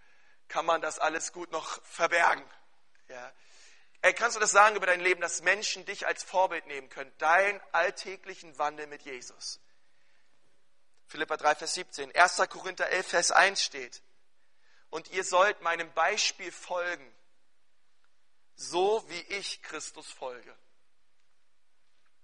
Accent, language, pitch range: German, German, 170-205 Hz